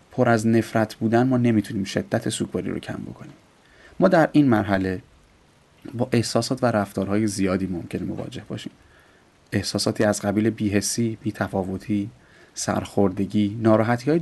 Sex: male